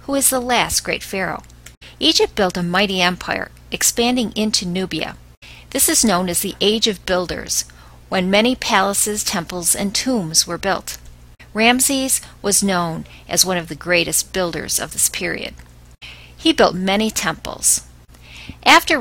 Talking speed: 150 wpm